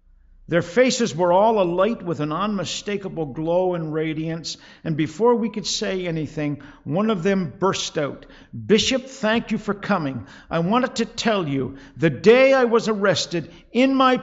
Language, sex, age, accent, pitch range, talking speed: English, male, 50-69, American, 145-205 Hz, 165 wpm